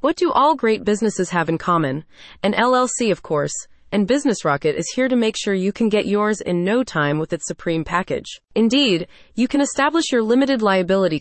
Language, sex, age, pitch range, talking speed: English, female, 20-39, 170-235 Hz, 205 wpm